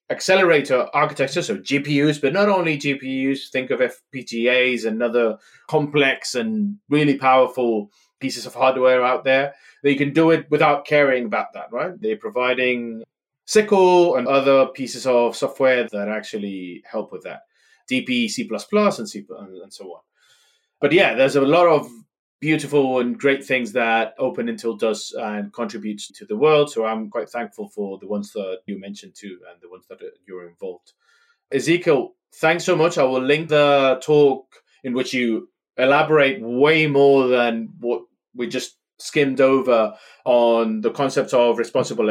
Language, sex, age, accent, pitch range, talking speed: English, male, 30-49, British, 120-155 Hz, 160 wpm